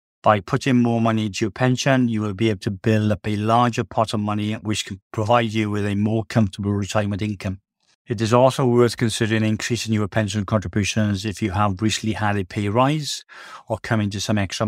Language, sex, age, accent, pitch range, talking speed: English, male, 40-59, British, 105-115 Hz, 210 wpm